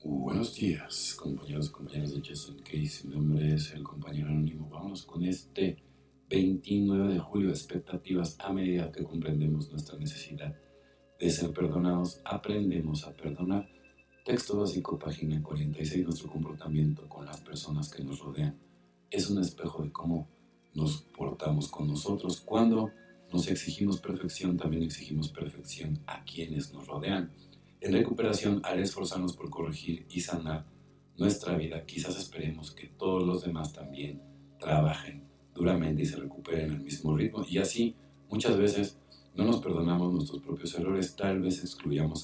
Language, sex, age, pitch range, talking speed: Spanish, male, 50-69, 75-95 Hz, 150 wpm